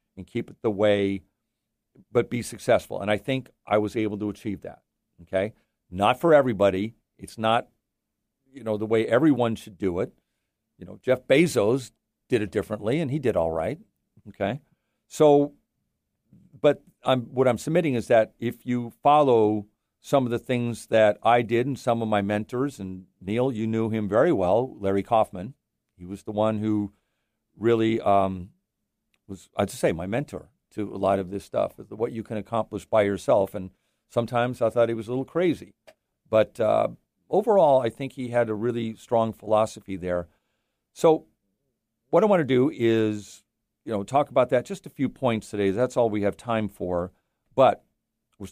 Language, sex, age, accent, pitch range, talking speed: English, male, 50-69, American, 100-125 Hz, 180 wpm